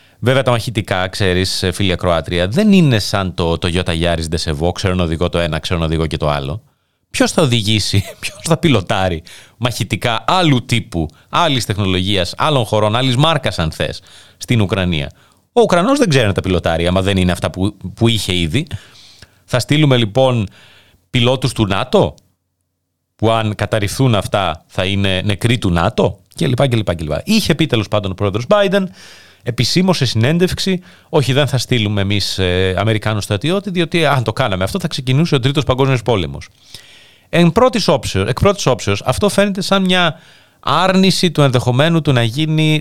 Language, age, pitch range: Greek, 30-49, 95-145 Hz